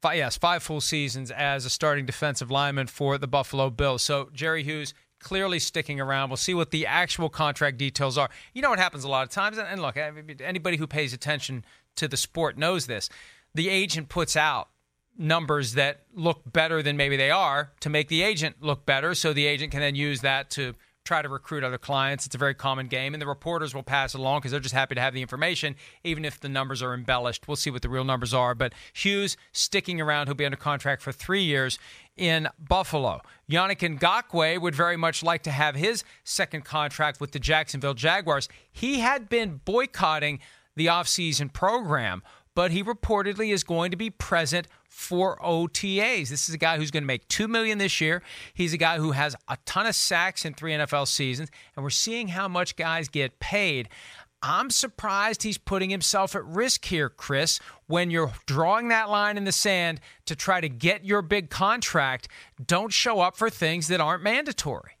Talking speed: 200 wpm